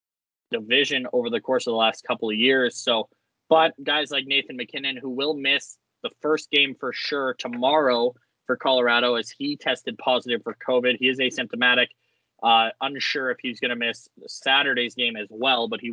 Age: 20-39